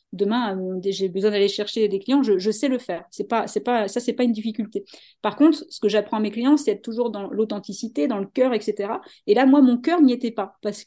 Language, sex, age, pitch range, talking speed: French, female, 30-49, 210-275 Hz, 265 wpm